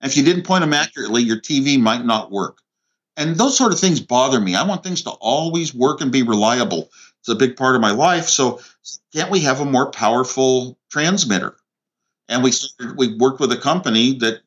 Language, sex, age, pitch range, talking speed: English, male, 50-69, 120-160 Hz, 210 wpm